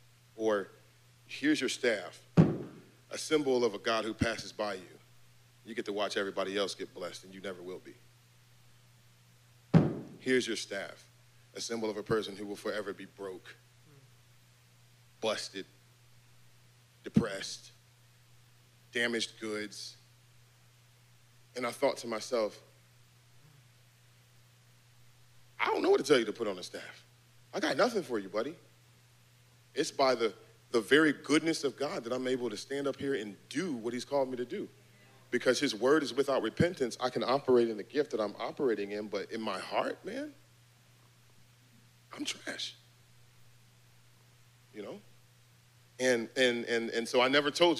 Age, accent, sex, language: 40-59, American, male, English